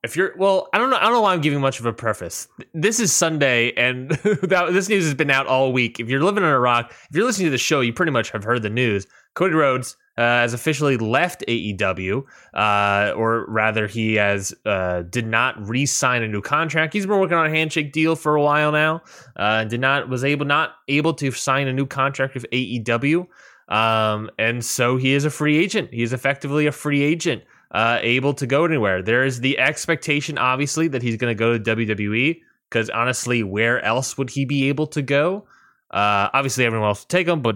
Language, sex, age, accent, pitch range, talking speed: English, male, 20-39, American, 115-150 Hz, 220 wpm